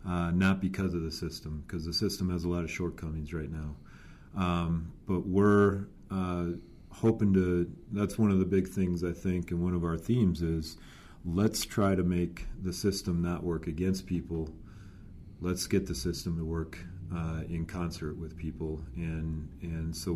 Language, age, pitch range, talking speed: English, 40-59, 80-95 Hz, 180 wpm